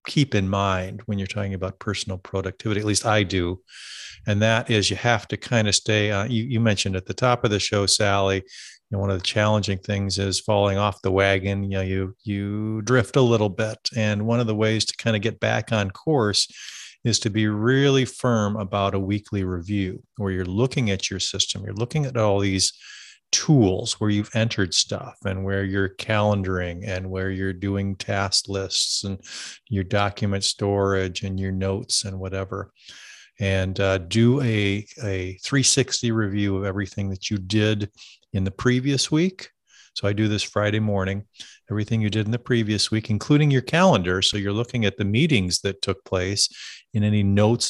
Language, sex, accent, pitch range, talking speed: English, male, American, 95-110 Hz, 190 wpm